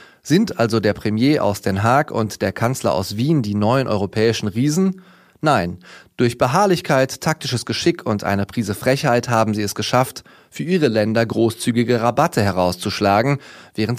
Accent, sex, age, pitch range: German, male, 30-49, 105-135 Hz